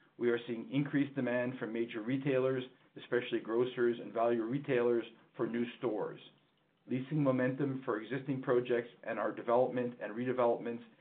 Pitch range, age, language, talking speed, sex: 120-130 Hz, 50-69, English, 140 wpm, male